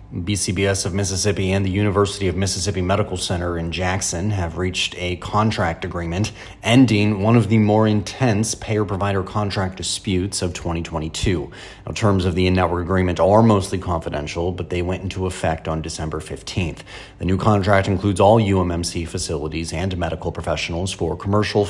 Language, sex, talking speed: English, male, 160 wpm